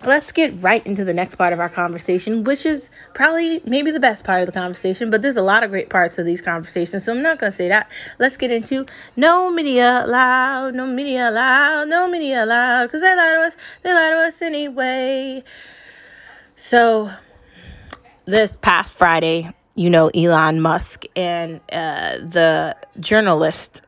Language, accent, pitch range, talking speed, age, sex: English, American, 170-255 Hz, 175 wpm, 20-39, female